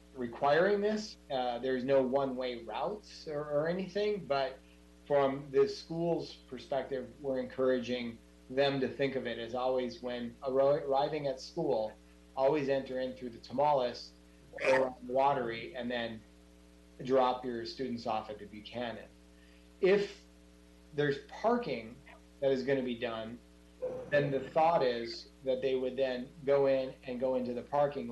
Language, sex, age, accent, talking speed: English, male, 30-49, American, 150 wpm